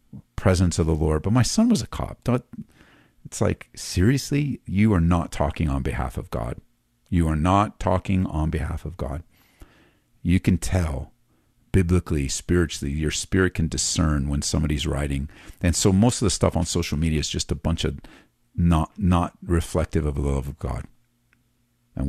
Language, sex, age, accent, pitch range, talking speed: English, male, 50-69, American, 80-100 Hz, 175 wpm